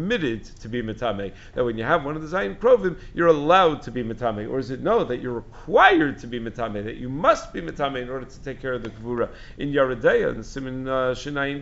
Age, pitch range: 50-69, 125-160 Hz